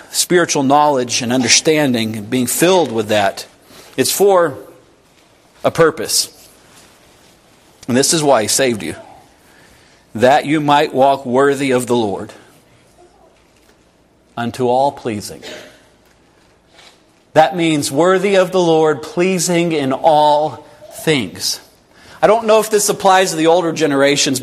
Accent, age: American, 40-59